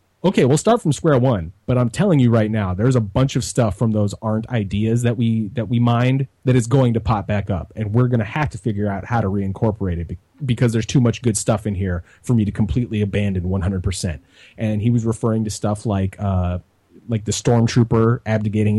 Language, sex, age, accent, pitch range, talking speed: English, male, 30-49, American, 100-125 Hz, 245 wpm